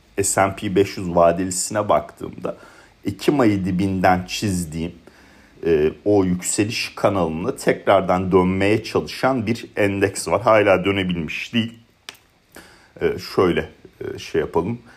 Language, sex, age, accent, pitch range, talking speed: Turkish, male, 40-59, native, 85-105 Hz, 105 wpm